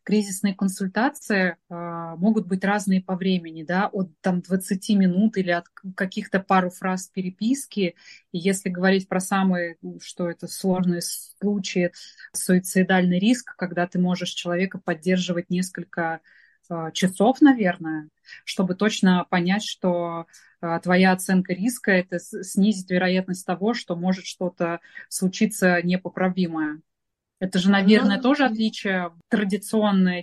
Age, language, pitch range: 20-39, Russian, 180-215 Hz